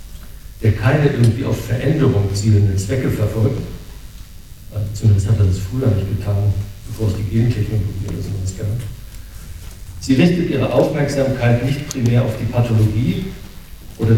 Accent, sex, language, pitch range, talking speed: German, male, German, 105-130 Hz, 130 wpm